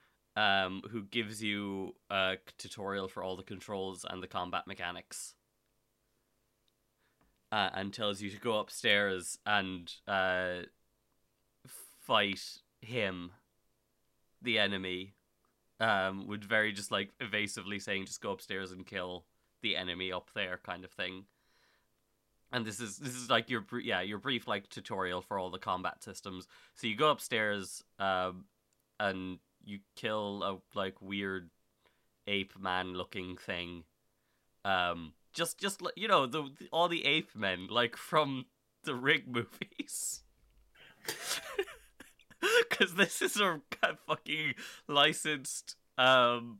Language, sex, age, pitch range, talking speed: English, male, 20-39, 95-120 Hz, 125 wpm